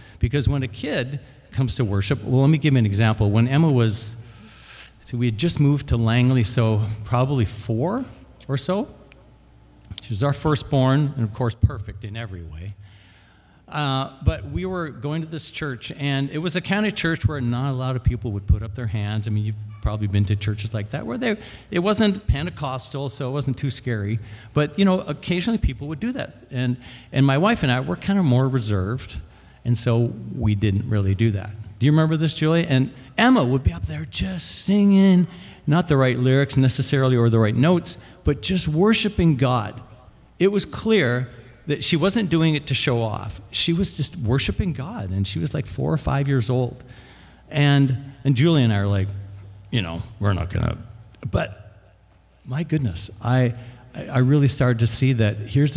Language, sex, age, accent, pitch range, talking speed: English, male, 50-69, American, 105-145 Hz, 200 wpm